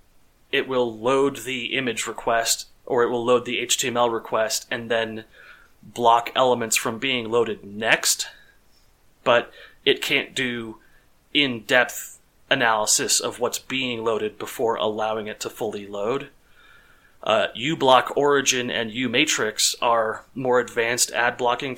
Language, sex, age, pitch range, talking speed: English, male, 30-49, 110-125 Hz, 125 wpm